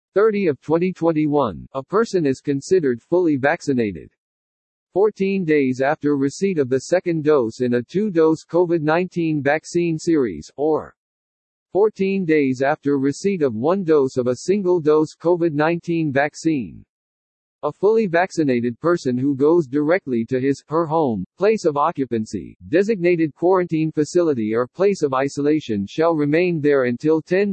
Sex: male